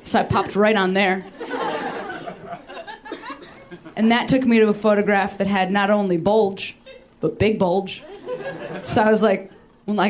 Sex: female